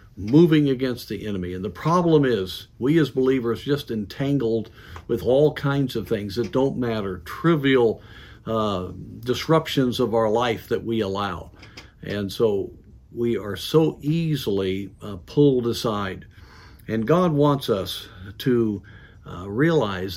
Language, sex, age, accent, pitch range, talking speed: English, male, 50-69, American, 100-140 Hz, 135 wpm